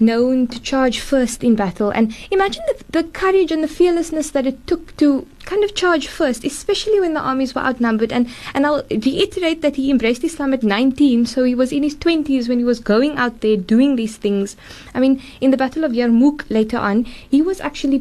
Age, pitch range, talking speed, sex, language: 20-39, 210-275 Hz, 215 wpm, female, English